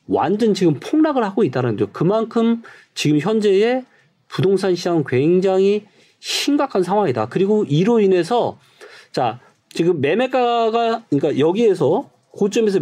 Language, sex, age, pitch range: Korean, male, 40-59, 160-225 Hz